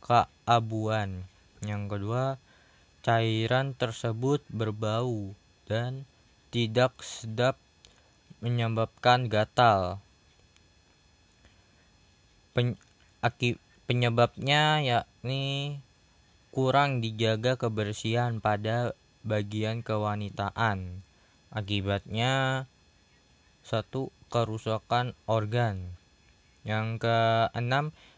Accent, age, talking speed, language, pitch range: native, 20-39, 55 wpm, Indonesian, 105-125 Hz